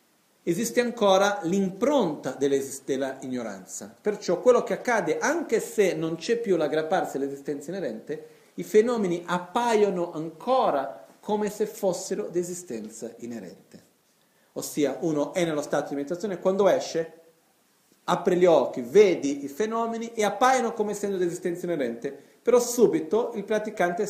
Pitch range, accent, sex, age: 145-220 Hz, native, male, 40-59